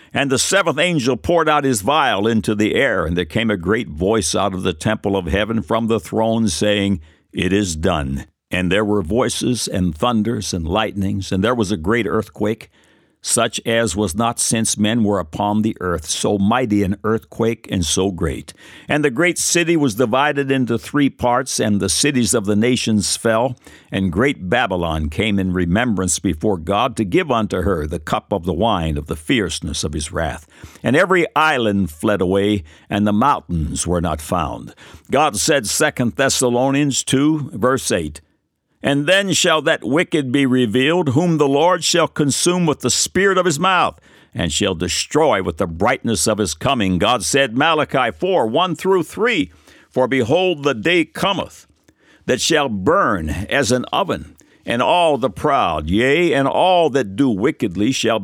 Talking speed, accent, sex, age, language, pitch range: 180 wpm, American, male, 60-79, English, 95-135 Hz